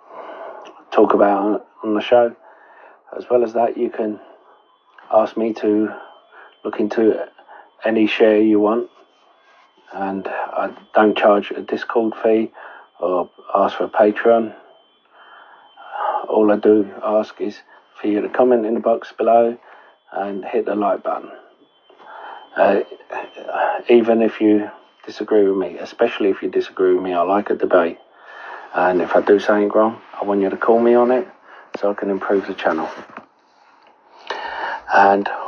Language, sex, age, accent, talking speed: English, male, 40-59, British, 150 wpm